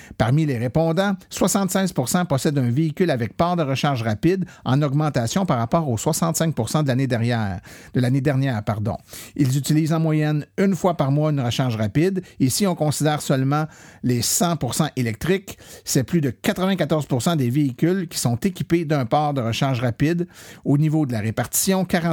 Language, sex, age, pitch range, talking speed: French, male, 50-69, 125-170 Hz, 170 wpm